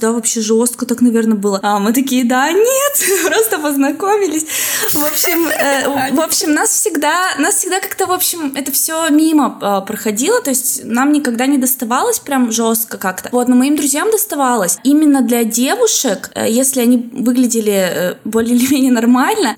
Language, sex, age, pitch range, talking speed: Russian, female, 20-39, 235-295 Hz, 170 wpm